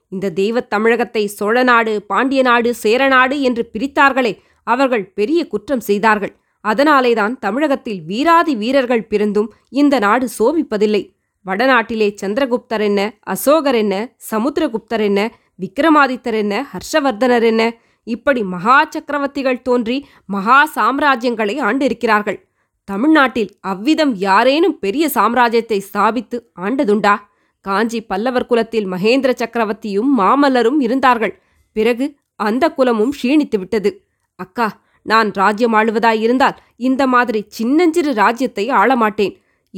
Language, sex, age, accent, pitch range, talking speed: Tamil, female, 20-39, native, 210-265 Hz, 100 wpm